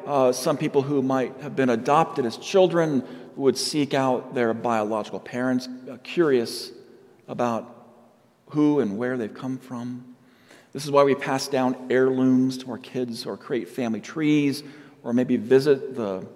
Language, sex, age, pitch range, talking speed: English, male, 40-59, 125-145 Hz, 160 wpm